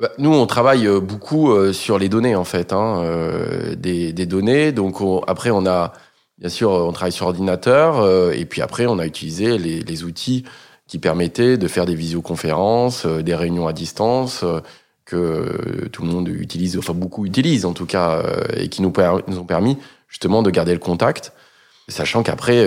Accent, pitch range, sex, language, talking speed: French, 85-110 Hz, male, French, 180 wpm